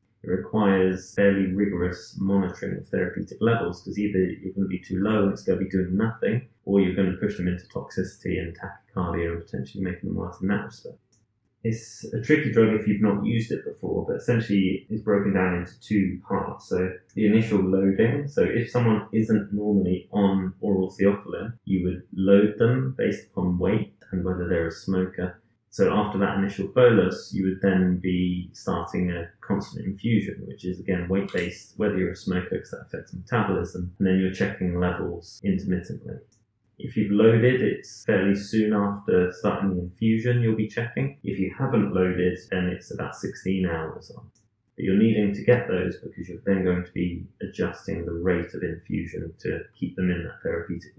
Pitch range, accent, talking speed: 90-110 Hz, British, 190 wpm